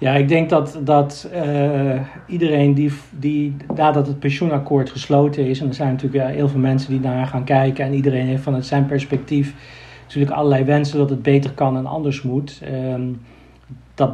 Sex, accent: male, Dutch